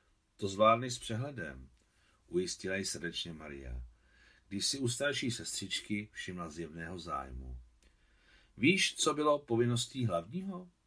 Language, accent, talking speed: Czech, native, 115 wpm